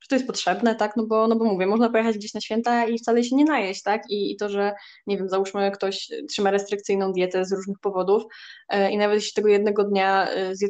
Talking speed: 230 wpm